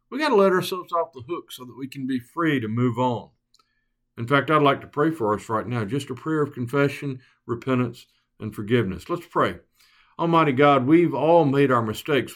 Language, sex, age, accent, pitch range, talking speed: English, male, 50-69, American, 115-140 Hz, 215 wpm